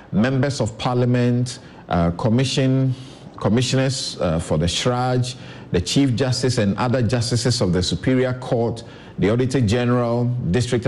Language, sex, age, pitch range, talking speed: English, male, 50-69, 105-130 Hz, 130 wpm